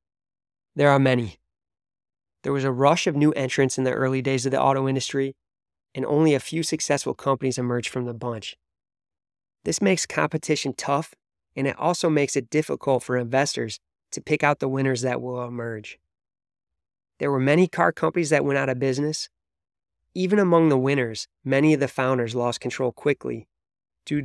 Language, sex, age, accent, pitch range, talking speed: English, male, 20-39, American, 100-140 Hz, 175 wpm